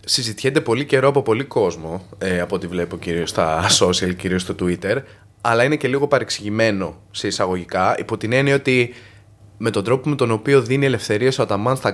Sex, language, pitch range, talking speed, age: male, Greek, 100-145 Hz, 190 wpm, 20-39